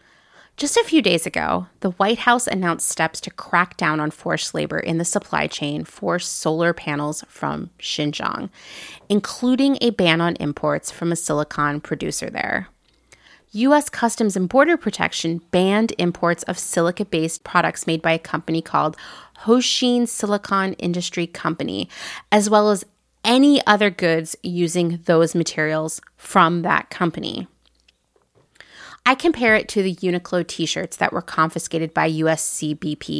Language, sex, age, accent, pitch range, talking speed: English, female, 30-49, American, 165-215 Hz, 145 wpm